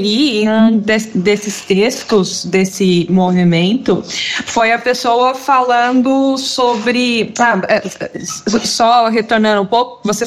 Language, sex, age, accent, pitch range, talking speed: Portuguese, female, 20-39, Brazilian, 195-240 Hz, 100 wpm